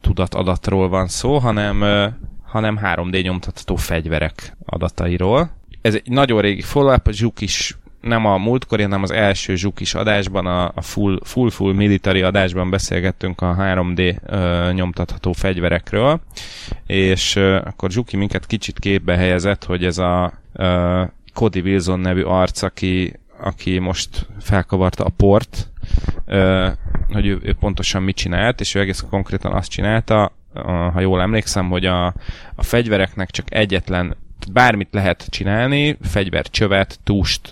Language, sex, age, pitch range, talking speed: Hungarian, male, 20-39, 90-105 Hz, 135 wpm